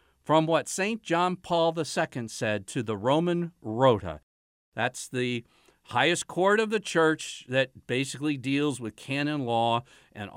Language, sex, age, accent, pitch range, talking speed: English, male, 50-69, American, 120-185 Hz, 145 wpm